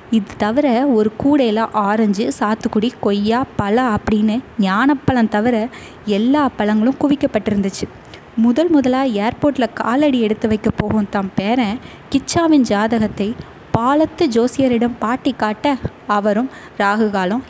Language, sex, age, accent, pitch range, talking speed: Tamil, female, 20-39, native, 215-265 Hz, 105 wpm